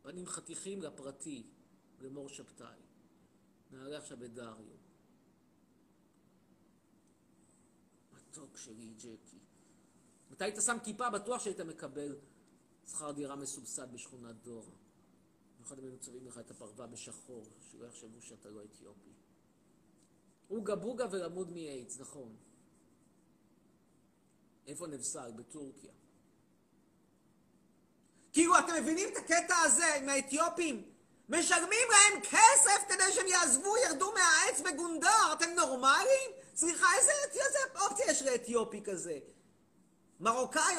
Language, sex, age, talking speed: Hebrew, male, 50-69, 105 wpm